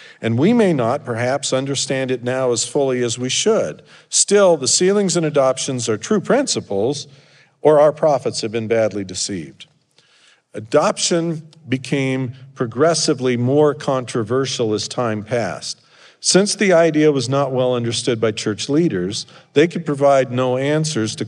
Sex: male